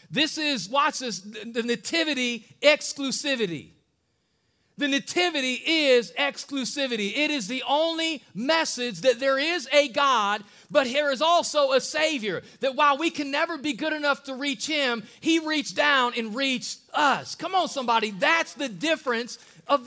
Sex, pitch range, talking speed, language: male, 170-270 Hz, 155 wpm, English